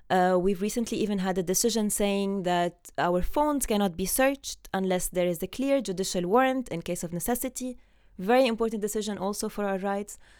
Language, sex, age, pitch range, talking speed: English, female, 20-39, 175-225 Hz, 185 wpm